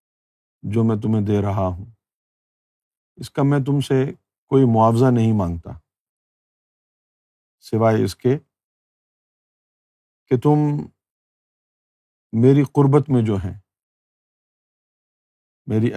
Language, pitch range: Urdu, 95-125 Hz